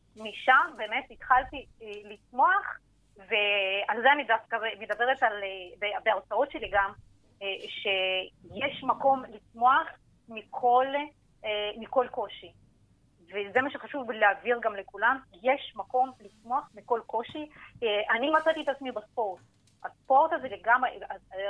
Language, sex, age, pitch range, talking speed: Hebrew, female, 30-49, 210-275 Hz, 105 wpm